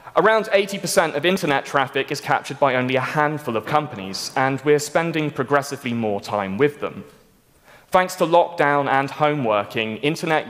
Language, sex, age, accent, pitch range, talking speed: English, male, 20-39, British, 120-165 Hz, 160 wpm